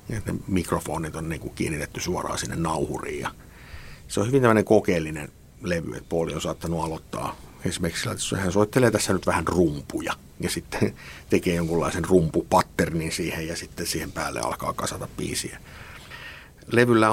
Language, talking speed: Finnish, 150 wpm